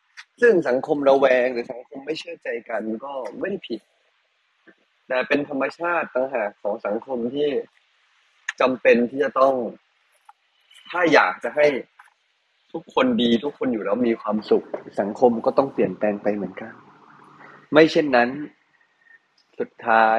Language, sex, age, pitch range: Thai, male, 30-49, 115-160 Hz